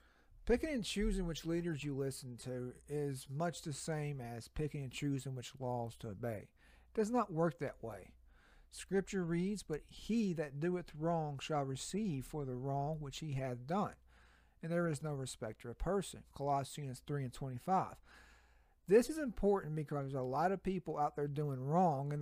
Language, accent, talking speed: English, American, 185 wpm